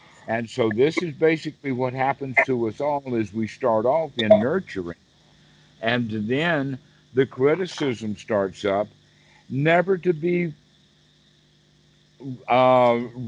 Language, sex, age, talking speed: English, male, 60-79, 120 wpm